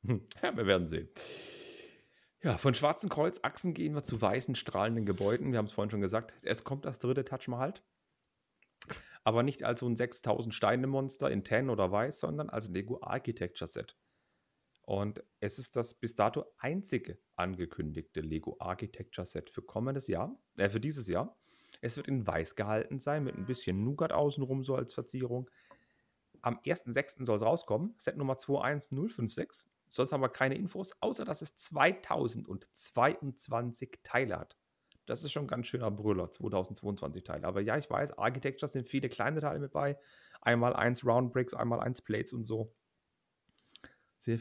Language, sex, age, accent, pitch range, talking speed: German, male, 40-59, German, 110-140 Hz, 160 wpm